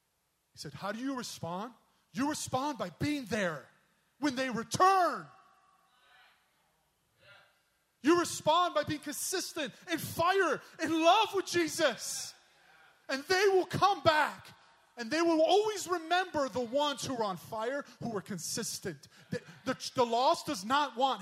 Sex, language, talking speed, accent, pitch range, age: male, English, 145 wpm, American, 195-300 Hz, 30-49